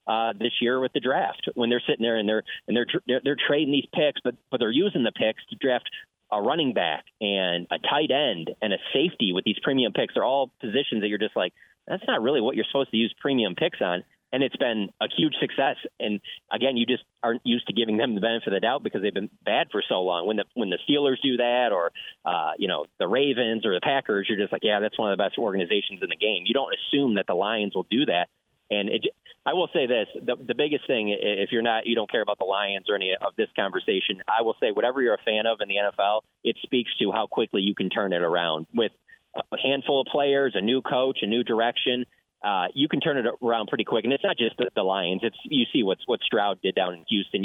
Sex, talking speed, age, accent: male, 260 wpm, 30-49, American